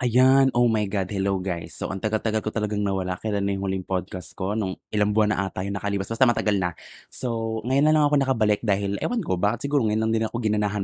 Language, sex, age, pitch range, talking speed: Filipino, male, 20-39, 95-120 Hz, 245 wpm